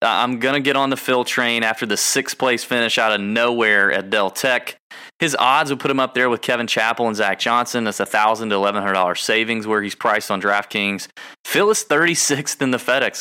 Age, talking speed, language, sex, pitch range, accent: 20-39, 225 wpm, English, male, 110-140 Hz, American